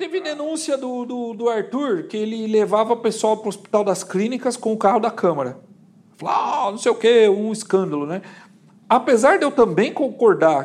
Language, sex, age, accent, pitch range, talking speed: Portuguese, male, 50-69, Brazilian, 195-250 Hz, 180 wpm